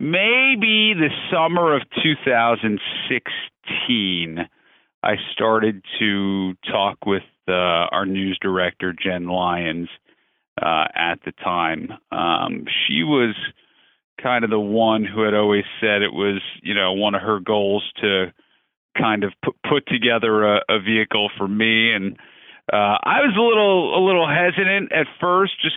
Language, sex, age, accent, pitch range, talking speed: English, male, 40-59, American, 100-145 Hz, 150 wpm